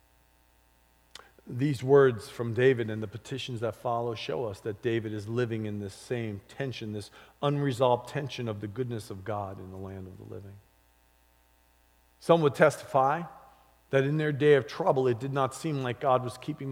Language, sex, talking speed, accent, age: English, male, 180 wpm, American, 40-59